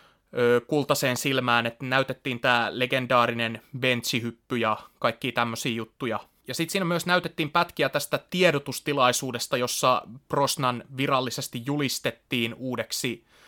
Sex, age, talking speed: male, 20-39, 105 wpm